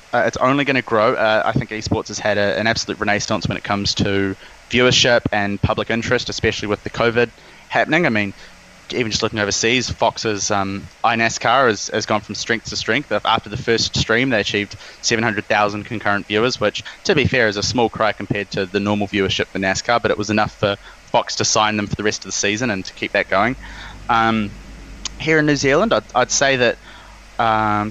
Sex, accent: male, Australian